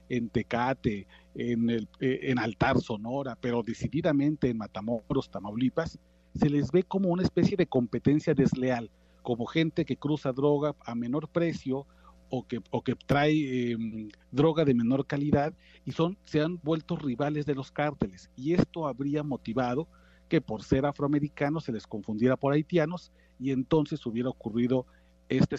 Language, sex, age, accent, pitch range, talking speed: Spanish, male, 40-59, Mexican, 120-150 Hz, 155 wpm